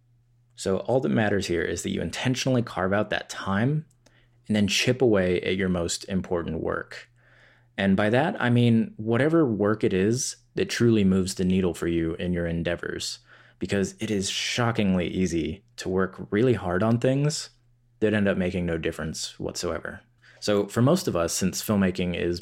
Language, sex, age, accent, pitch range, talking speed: English, male, 20-39, American, 90-120 Hz, 180 wpm